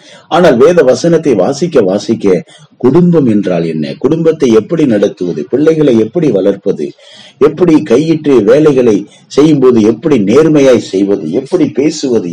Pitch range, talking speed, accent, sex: 120-175 Hz, 110 wpm, native, male